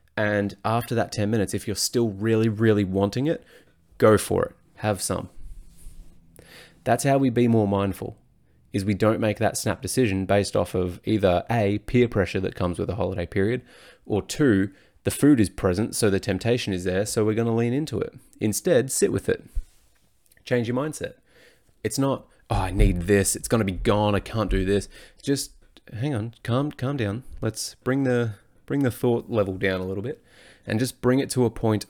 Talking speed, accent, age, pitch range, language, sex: 200 wpm, Australian, 20-39, 95-115 Hz, English, male